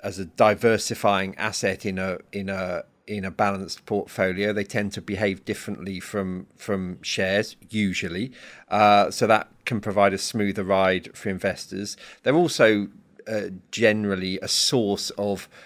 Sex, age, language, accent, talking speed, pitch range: male, 40-59, English, British, 145 wpm, 95-110 Hz